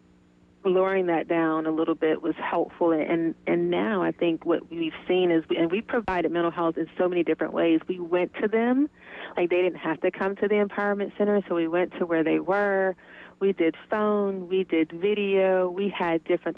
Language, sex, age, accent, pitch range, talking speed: English, female, 30-49, American, 160-185 Hz, 205 wpm